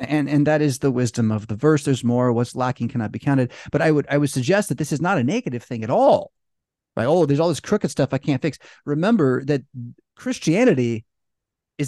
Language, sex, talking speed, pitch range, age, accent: English, male, 225 wpm, 110-145 Hz, 30-49, American